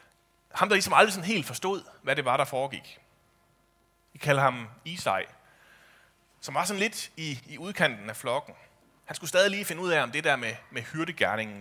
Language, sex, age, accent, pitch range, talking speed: Danish, male, 30-49, native, 120-165 Hz, 200 wpm